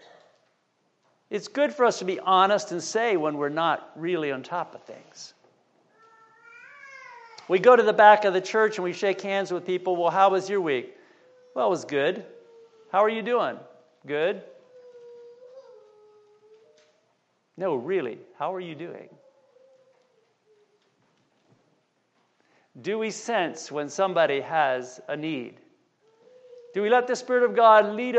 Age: 50-69